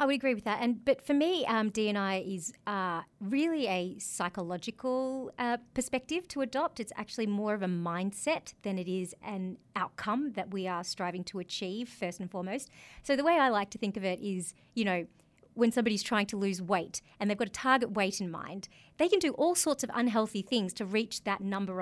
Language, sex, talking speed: English, female, 215 wpm